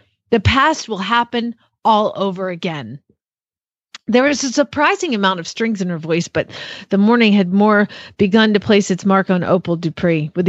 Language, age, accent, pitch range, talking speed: English, 40-59, American, 180-235 Hz, 175 wpm